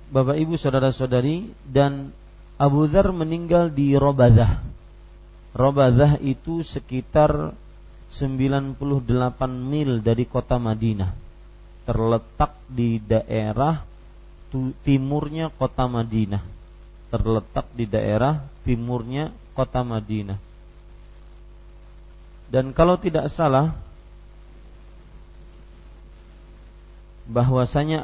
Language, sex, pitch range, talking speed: Malay, male, 110-140 Hz, 75 wpm